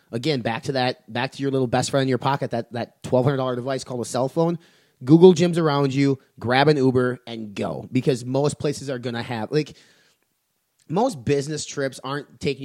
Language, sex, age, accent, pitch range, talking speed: English, male, 30-49, American, 125-150 Hz, 205 wpm